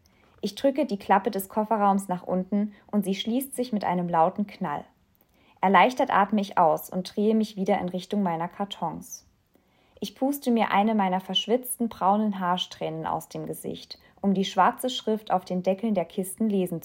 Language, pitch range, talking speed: German, 180-215 Hz, 175 wpm